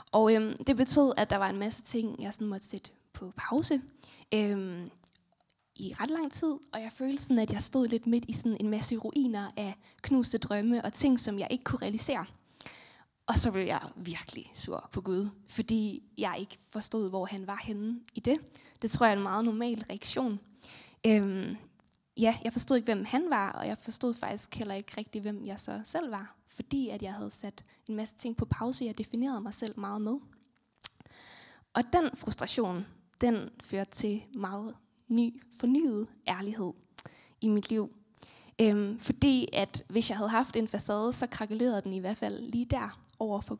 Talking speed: 190 wpm